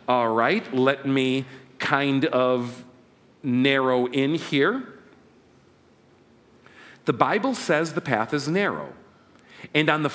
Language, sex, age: English, male, 40-59